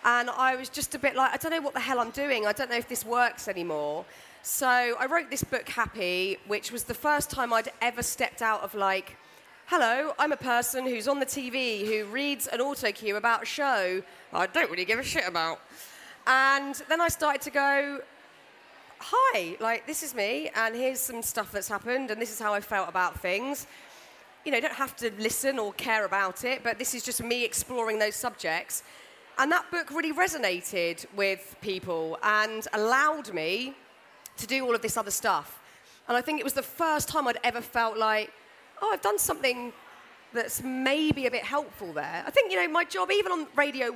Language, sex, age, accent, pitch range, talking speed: English, female, 30-49, British, 220-280 Hz, 205 wpm